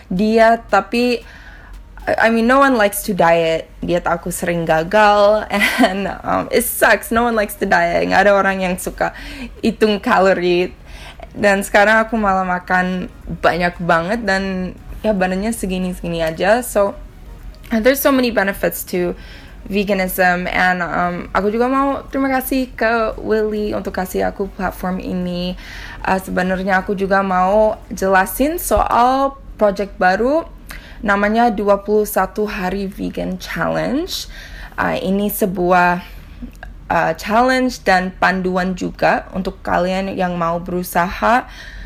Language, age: Indonesian, 10-29